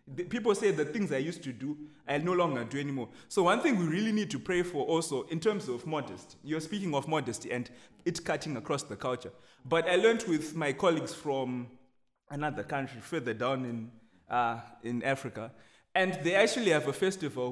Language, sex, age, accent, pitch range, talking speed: English, male, 20-39, South African, 135-180 Hz, 200 wpm